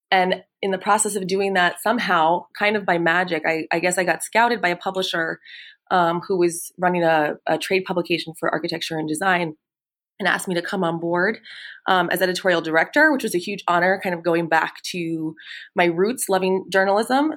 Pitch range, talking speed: 165-200 Hz, 200 wpm